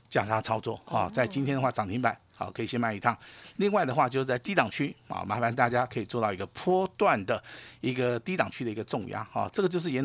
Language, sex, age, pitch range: Chinese, male, 50-69, 115-185 Hz